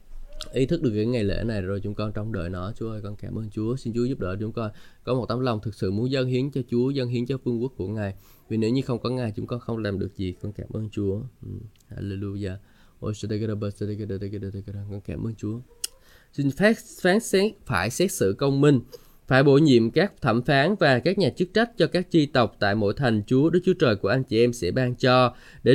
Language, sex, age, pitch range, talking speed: Vietnamese, male, 20-39, 105-145 Hz, 240 wpm